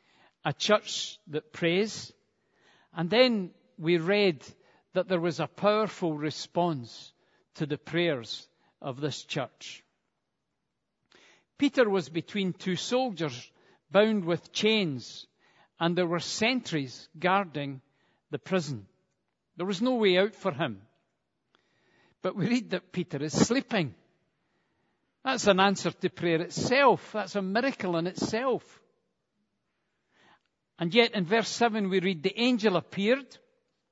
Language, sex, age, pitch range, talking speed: English, male, 50-69, 165-215 Hz, 125 wpm